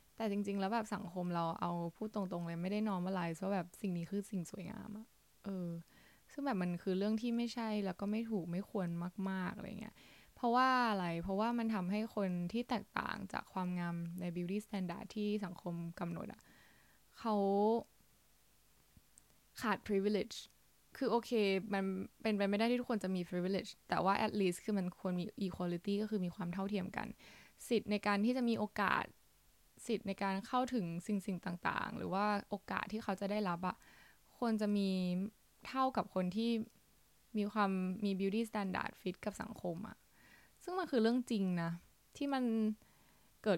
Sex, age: female, 10-29